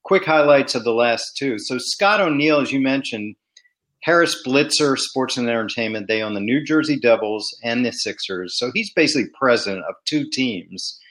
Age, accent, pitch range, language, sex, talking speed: 40-59, American, 110-160 Hz, English, male, 180 wpm